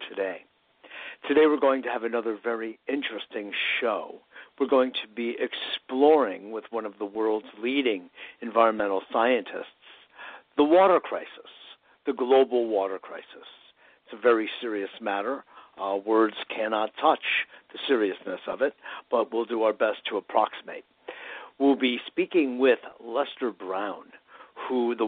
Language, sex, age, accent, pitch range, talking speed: English, male, 60-79, American, 115-155 Hz, 140 wpm